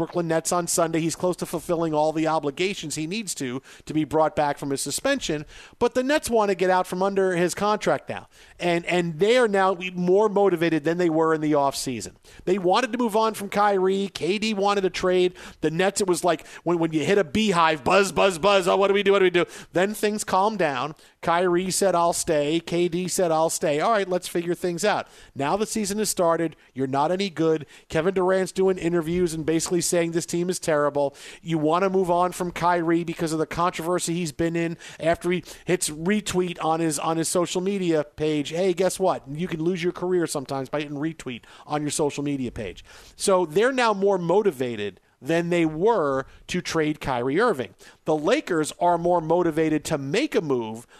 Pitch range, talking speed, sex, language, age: 160-190 Hz, 215 wpm, male, English, 50-69